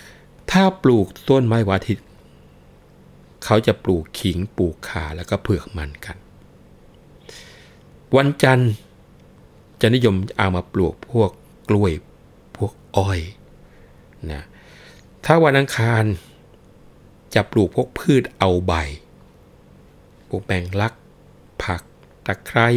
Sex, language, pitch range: male, Thai, 90-115 Hz